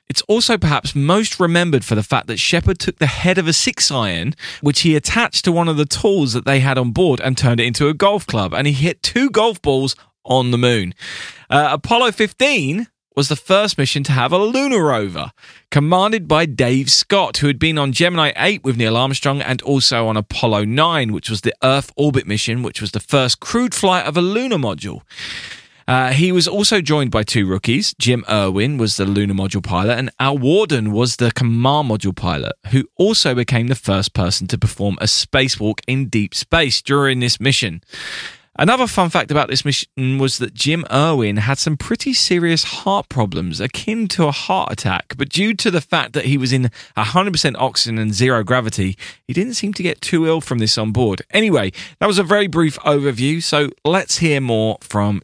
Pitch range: 115-170 Hz